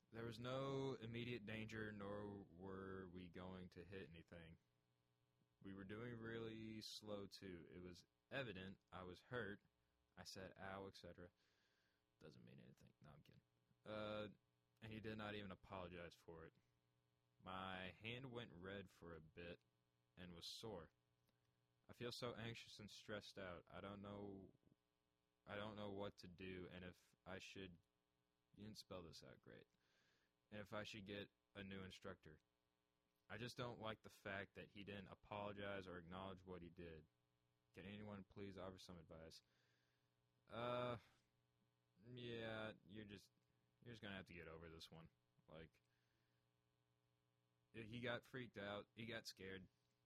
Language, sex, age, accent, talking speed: English, male, 20-39, American, 155 wpm